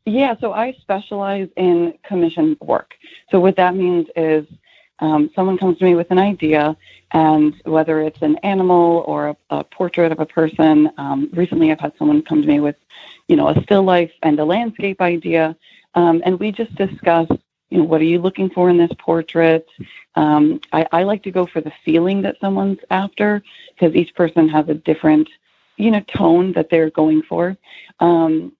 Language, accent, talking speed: English, American, 190 wpm